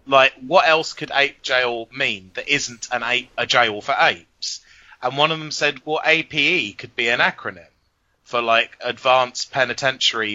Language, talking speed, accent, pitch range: English, 175 wpm, British, 115-145 Hz